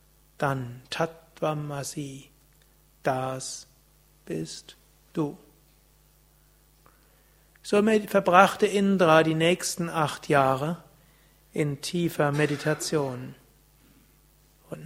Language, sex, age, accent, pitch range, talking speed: German, male, 60-79, German, 140-165 Hz, 65 wpm